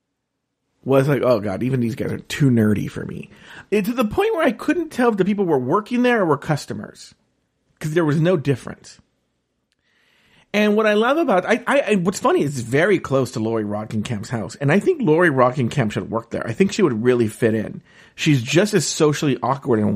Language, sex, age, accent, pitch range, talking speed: English, male, 40-59, American, 125-195 Hz, 225 wpm